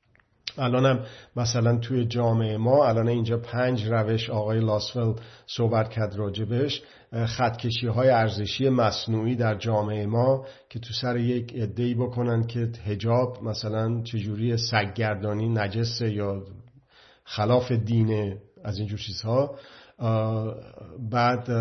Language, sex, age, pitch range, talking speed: Persian, male, 50-69, 110-125 Hz, 110 wpm